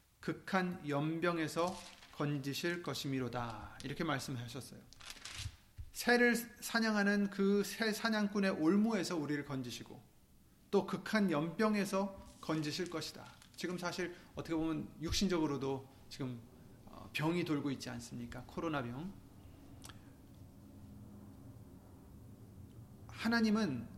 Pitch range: 125-180 Hz